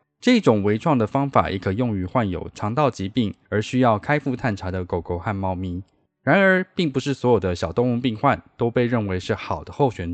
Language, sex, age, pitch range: Chinese, male, 20-39, 100-140 Hz